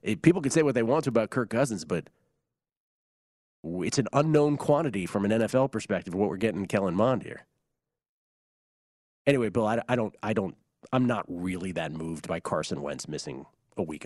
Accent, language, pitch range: American, English, 95-120 Hz